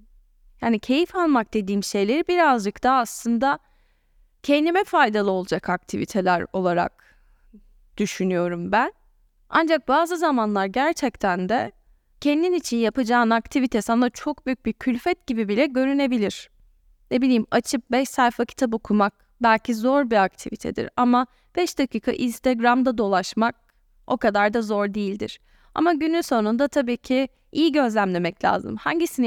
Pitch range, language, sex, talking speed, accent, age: 210-280 Hz, Turkish, female, 125 wpm, native, 10-29